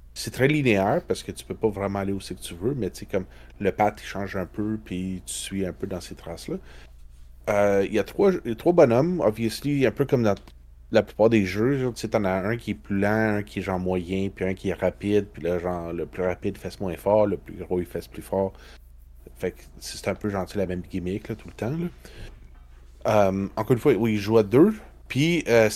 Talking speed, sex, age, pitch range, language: 250 wpm, male, 30-49, 90-110 Hz, French